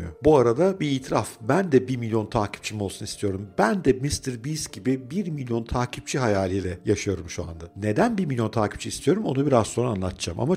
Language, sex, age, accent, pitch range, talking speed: Turkish, male, 50-69, native, 105-140 Hz, 185 wpm